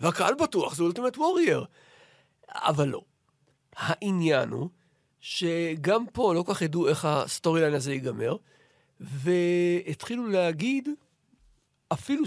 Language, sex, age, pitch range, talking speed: Hebrew, male, 50-69, 150-195 Hz, 110 wpm